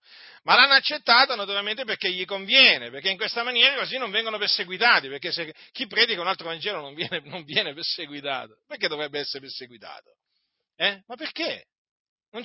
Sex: male